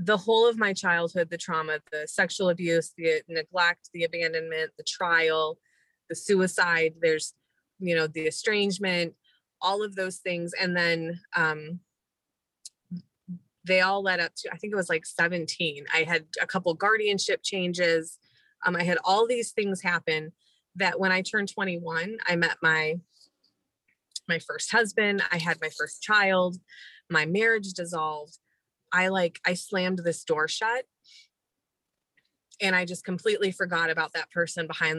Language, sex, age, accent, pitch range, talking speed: English, female, 20-39, American, 165-195 Hz, 155 wpm